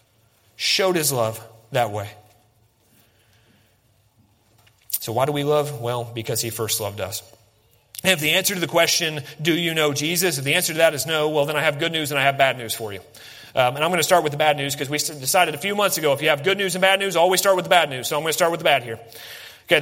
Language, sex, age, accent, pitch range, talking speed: English, male, 30-49, American, 120-185 Hz, 265 wpm